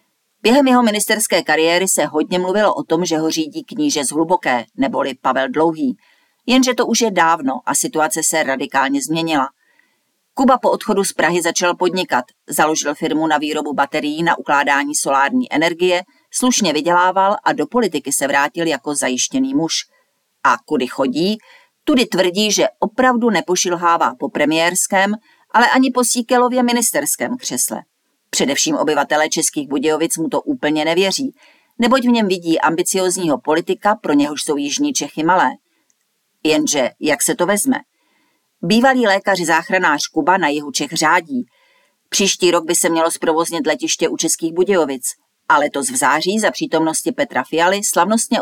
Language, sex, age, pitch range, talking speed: Czech, female, 40-59, 155-245 Hz, 150 wpm